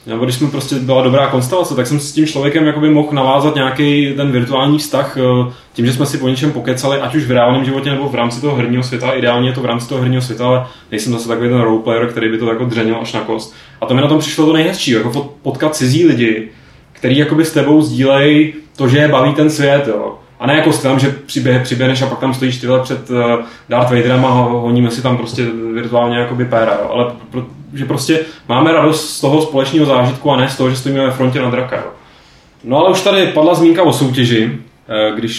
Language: Czech